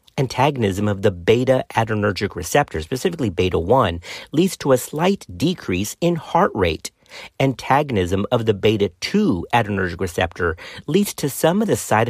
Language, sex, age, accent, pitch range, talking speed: English, male, 40-59, American, 95-130 Hz, 140 wpm